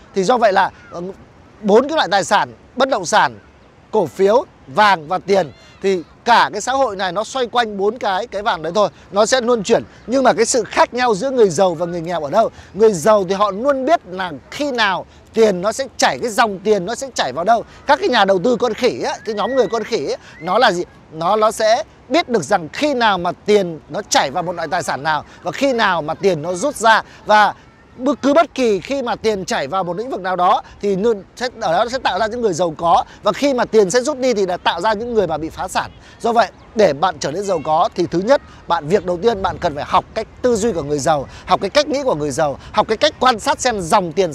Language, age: English, 20-39